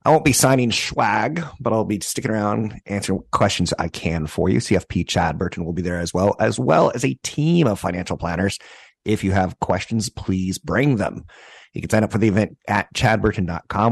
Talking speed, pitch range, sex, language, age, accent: 205 wpm, 90-110 Hz, male, English, 30-49, American